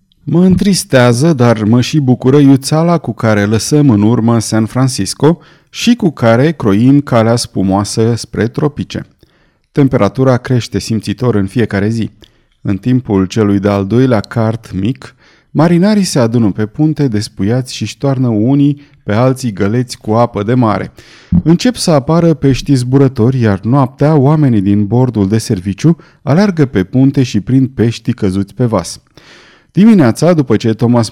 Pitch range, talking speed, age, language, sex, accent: 110-140 Hz, 145 wpm, 30-49, Romanian, male, native